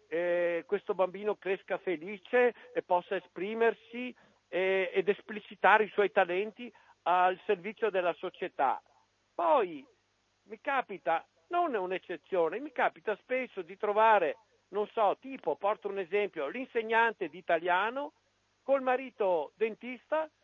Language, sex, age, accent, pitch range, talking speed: Italian, male, 50-69, native, 165-230 Hz, 120 wpm